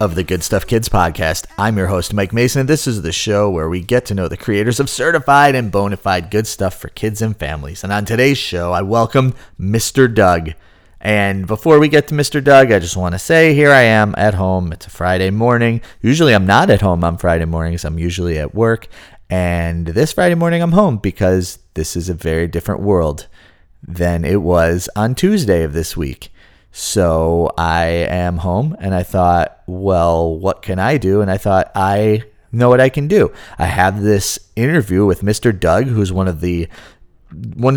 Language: English